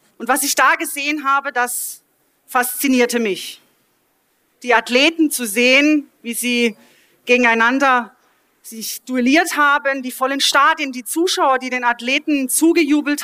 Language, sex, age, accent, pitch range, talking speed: German, female, 30-49, German, 235-285 Hz, 125 wpm